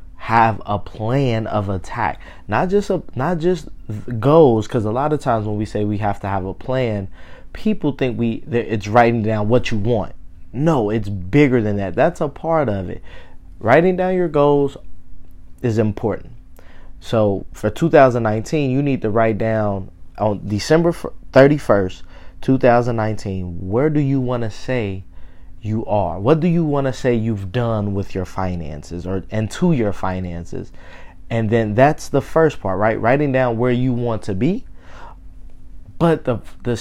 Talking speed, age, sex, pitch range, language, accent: 170 wpm, 20-39, male, 95-130 Hz, English, American